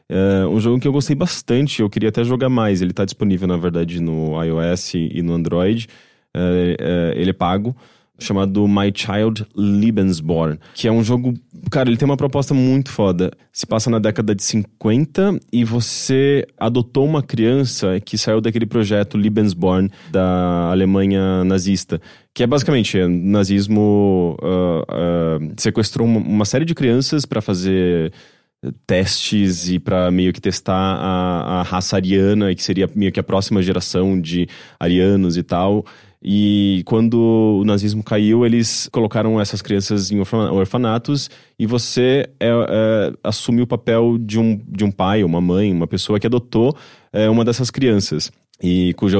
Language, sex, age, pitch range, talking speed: English, male, 20-39, 95-115 Hz, 160 wpm